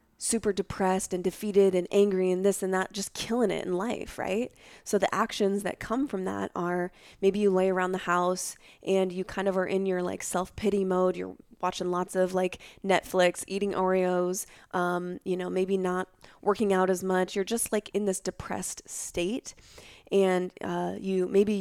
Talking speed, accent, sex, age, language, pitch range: 190 wpm, American, female, 20-39, English, 180-195 Hz